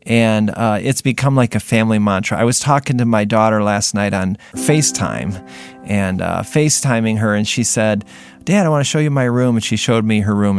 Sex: male